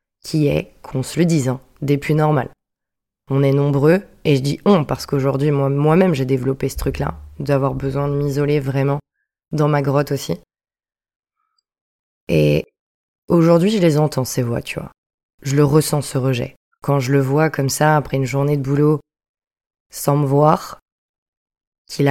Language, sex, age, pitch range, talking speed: French, female, 20-39, 130-150 Hz, 170 wpm